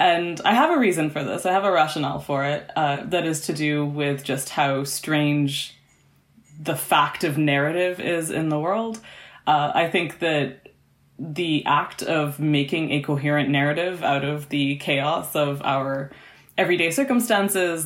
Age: 20-39